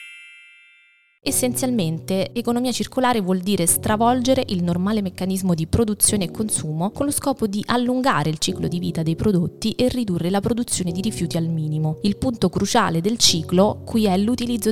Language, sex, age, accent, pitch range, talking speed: Italian, female, 20-39, native, 170-220 Hz, 165 wpm